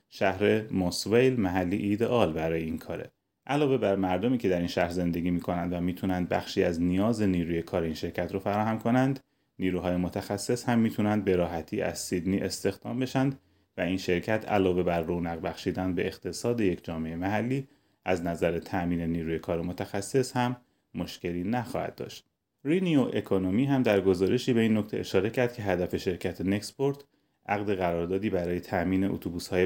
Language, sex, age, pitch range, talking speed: Persian, male, 30-49, 90-115 Hz, 160 wpm